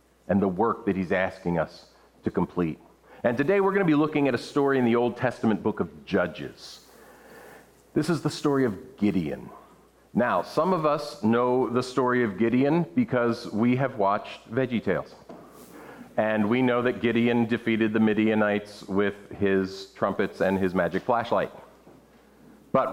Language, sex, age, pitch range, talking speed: English, male, 40-59, 105-160 Hz, 165 wpm